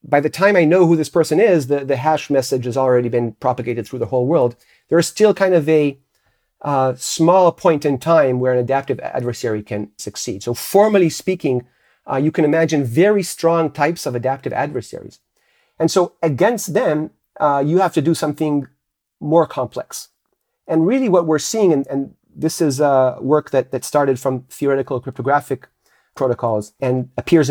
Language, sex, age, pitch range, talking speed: English, male, 40-59, 130-170 Hz, 180 wpm